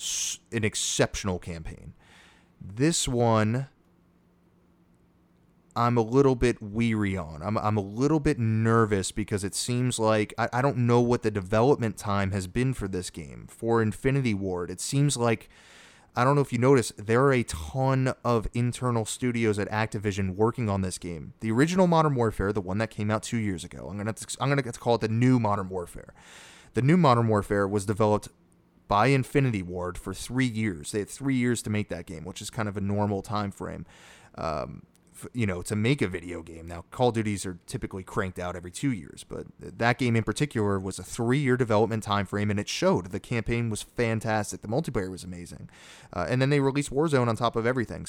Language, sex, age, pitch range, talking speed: English, male, 30-49, 100-125 Hz, 205 wpm